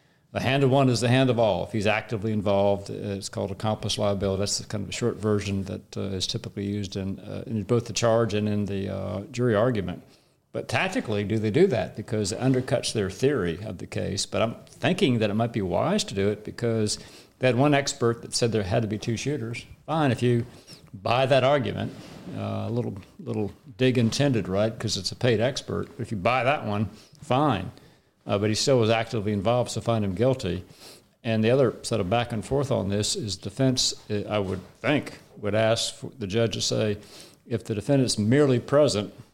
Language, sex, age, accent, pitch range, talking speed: English, male, 50-69, American, 100-125 Hz, 210 wpm